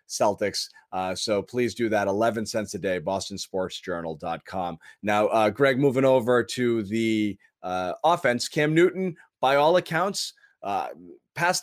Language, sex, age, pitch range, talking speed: English, male, 30-49, 120-150 Hz, 150 wpm